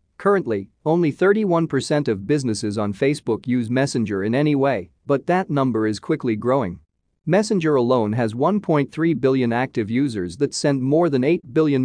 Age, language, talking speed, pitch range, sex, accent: 40-59, English, 155 wpm, 110-150 Hz, male, American